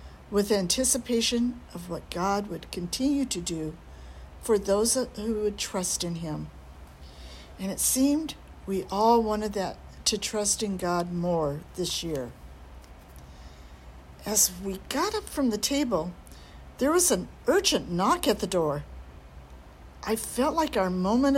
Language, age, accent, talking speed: English, 60-79, American, 140 wpm